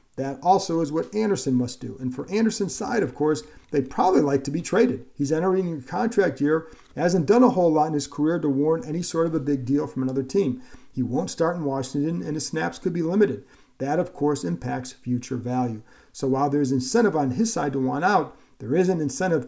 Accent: American